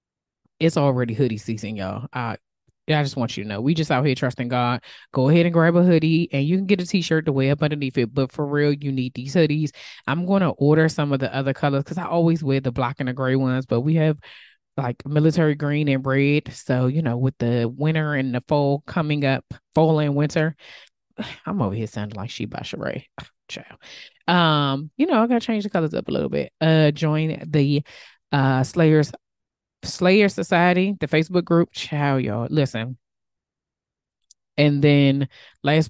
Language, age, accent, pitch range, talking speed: English, 20-39, American, 130-155 Hz, 200 wpm